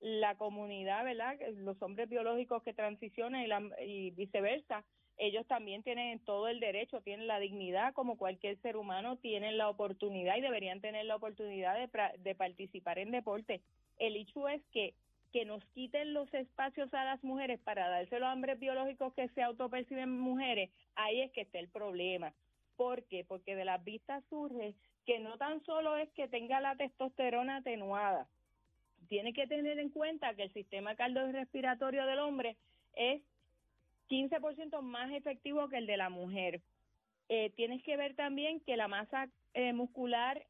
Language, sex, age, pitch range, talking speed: Spanish, female, 30-49, 205-260 Hz, 165 wpm